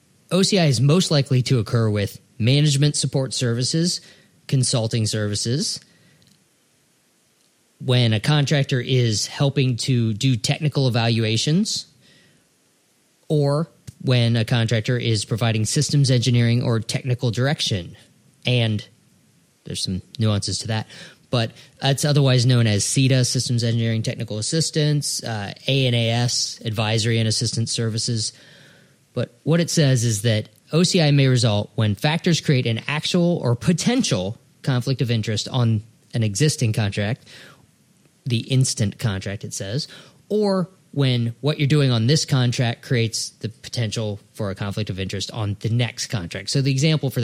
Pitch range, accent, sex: 110-145 Hz, American, male